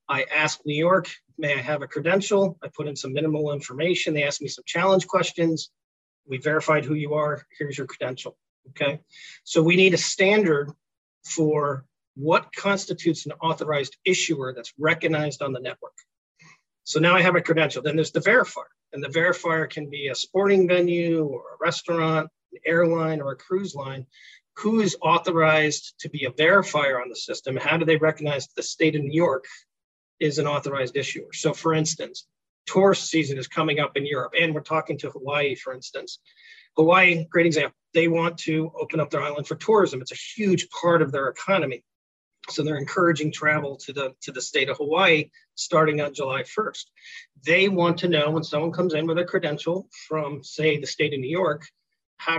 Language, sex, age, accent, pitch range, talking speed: English, male, 40-59, American, 145-170 Hz, 190 wpm